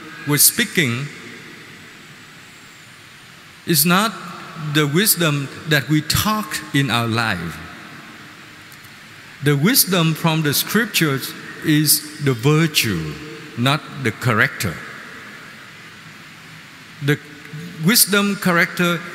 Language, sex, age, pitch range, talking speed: Vietnamese, male, 50-69, 145-170 Hz, 80 wpm